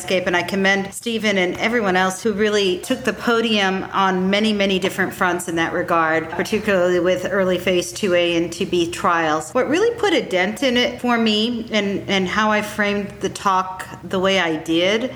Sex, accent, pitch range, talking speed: female, American, 185-240 Hz, 190 wpm